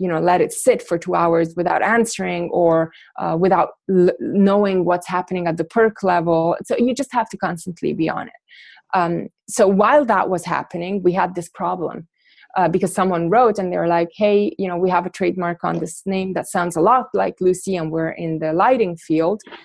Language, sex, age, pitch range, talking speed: English, female, 20-39, 175-210 Hz, 215 wpm